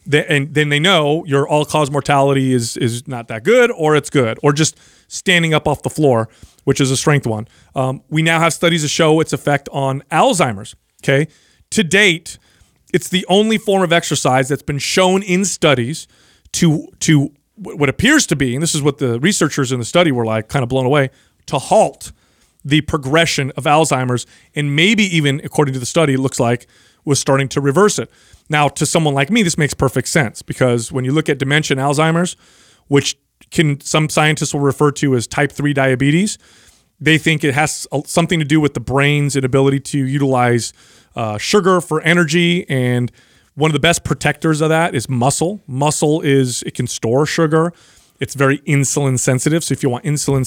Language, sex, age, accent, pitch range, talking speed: English, male, 30-49, American, 135-160 Hz, 195 wpm